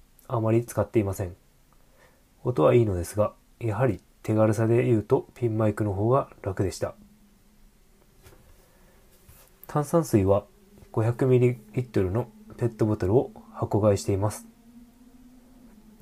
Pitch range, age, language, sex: 100-125 Hz, 20-39, Japanese, male